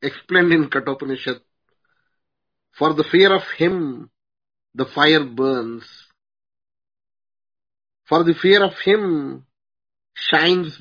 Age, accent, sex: 50-69, Indian, male